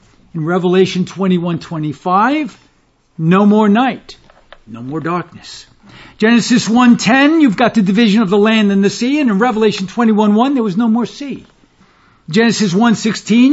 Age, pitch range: 60-79, 190-230 Hz